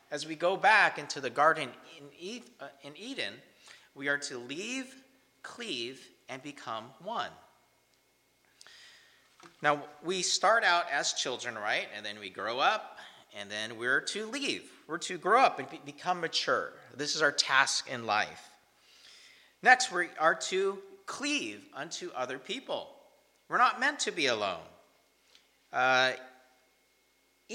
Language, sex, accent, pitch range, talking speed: English, male, American, 130-205 Hz, 135 wpm